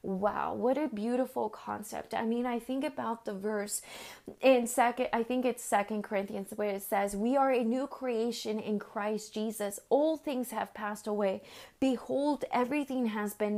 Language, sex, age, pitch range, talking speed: English, female, 20-39, 220-265 Hz, 170 wpm